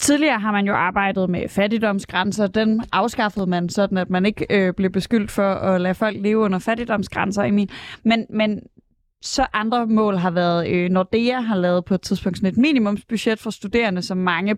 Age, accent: 20-39, native